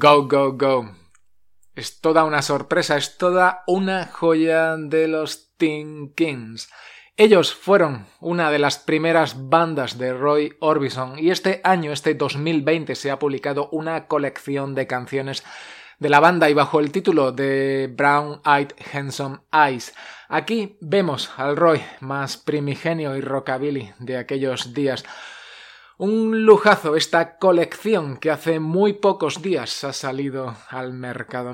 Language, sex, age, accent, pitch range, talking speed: Spanish, male, 20-39, Spanish, 135-165 Hz, 140 wpm